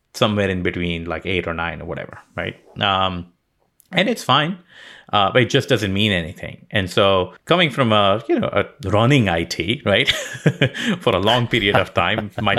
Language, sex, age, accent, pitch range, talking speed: English, male, 30-49, Indian, 95-130 Hz, 185 wpm